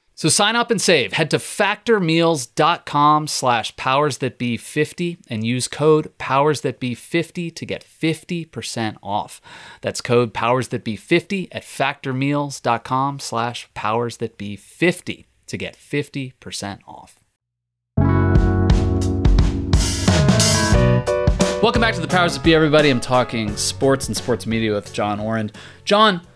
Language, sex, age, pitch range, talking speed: English, male, 30-49, 105-155 Hz, 130 wpm